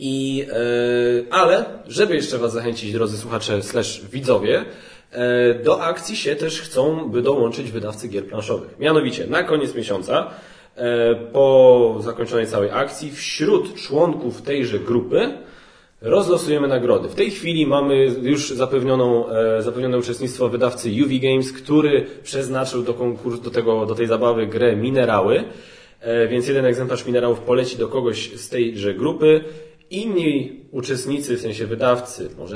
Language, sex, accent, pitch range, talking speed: Polish, male, native, 115-140 Hz, 135 wpm